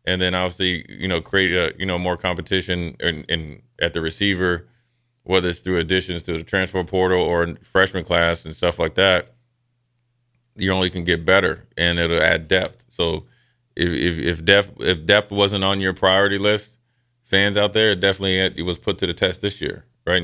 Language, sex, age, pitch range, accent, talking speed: English, male, 20-39, 90-110 Hz, American, 200 wpm